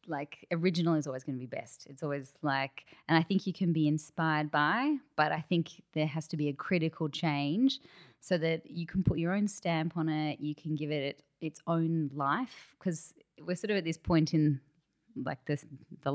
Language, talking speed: English, 210 wpm